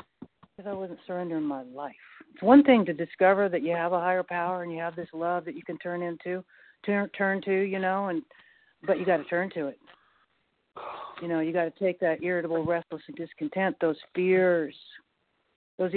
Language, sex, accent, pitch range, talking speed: English, female, American, 155-195 Hz, 195 wpm